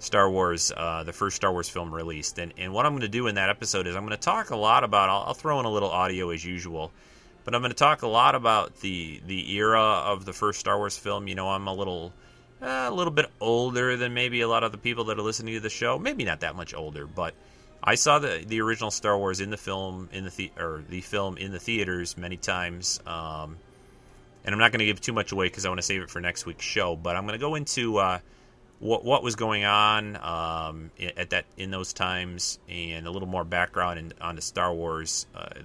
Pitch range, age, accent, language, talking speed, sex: 90-110 Hz, 30-49, American, English, 250 wpm, male